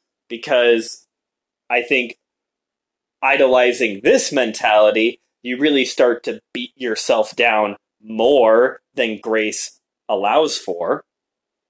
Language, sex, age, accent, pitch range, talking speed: English, male, 20-39, American, 110-170 Hz, 90 wpm